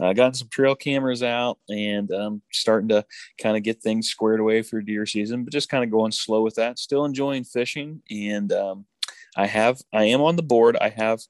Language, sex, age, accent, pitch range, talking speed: English, male, 20-39, American, 105-135 Hz, 225 wpm